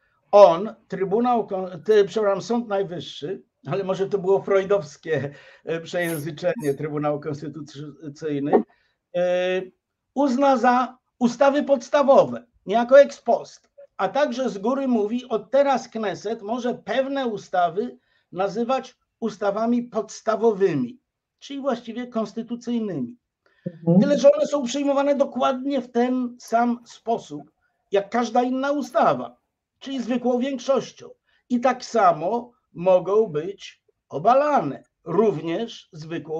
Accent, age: native, 50-69